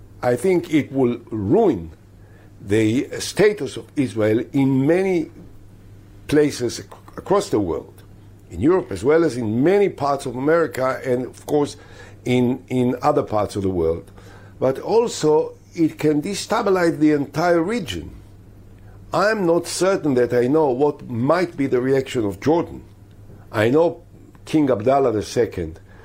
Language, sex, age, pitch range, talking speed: English, male, 60-79, 100-150 Hz, 145 wpm